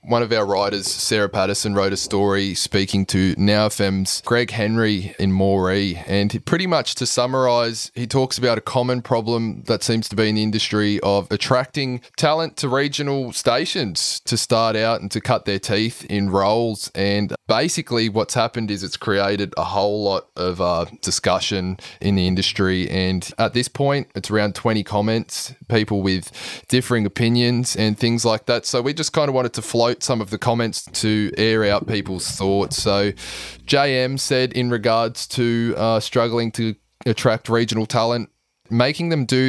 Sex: male